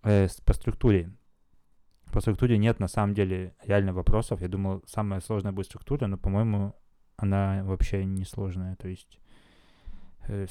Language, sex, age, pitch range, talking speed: Russian, male, 20-39, 95-105 Hz, 135 wpm